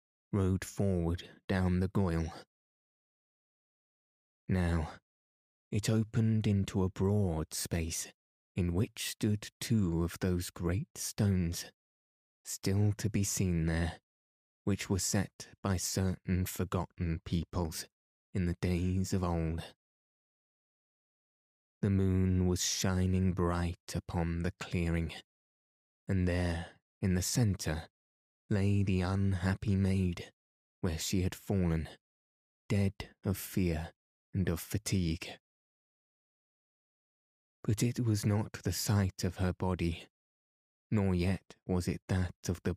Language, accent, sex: English, British, male